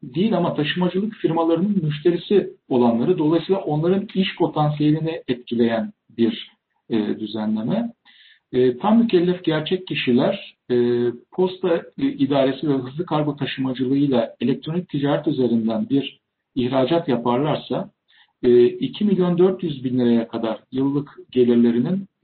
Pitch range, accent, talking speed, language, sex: 125-180 Hz, native, 90 wpm, Turkish, male